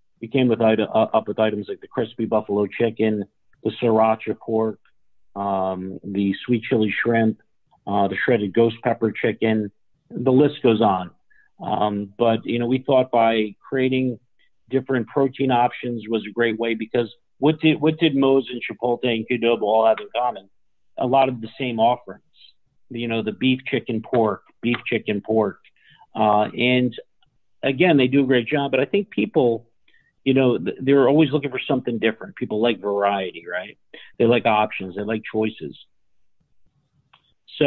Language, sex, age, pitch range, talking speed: English, male, 50-69, 105-125 Hz, 170 wpm